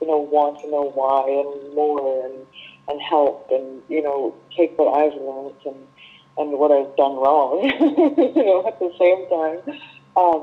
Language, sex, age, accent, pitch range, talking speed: English, female, 40-59, American, 140-165 Hz, 180 wpm